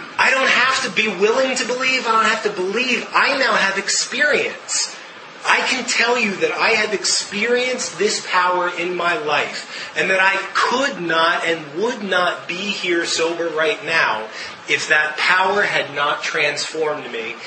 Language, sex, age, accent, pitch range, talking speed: English, male, 30-49, American, 165-225 Hz, 170 wpm